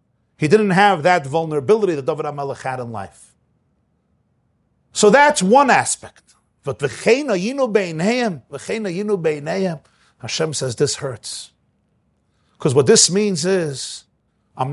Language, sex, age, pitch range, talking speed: English, male, 50-69, 135-225 Hz, 105 wpm